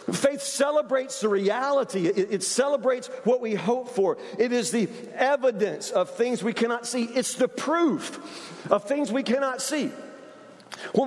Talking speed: 150 wpm